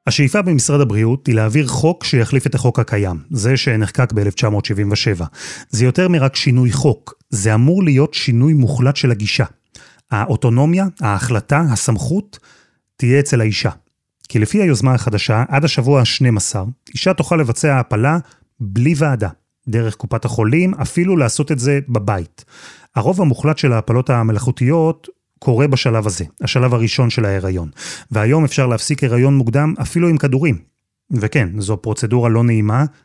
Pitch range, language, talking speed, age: 110-145 Hz, Hebrew, 140 wpm, 30-49